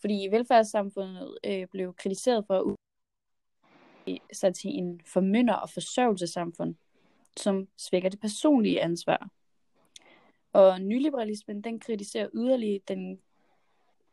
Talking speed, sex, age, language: 105 wpm, female, 20-39, Danish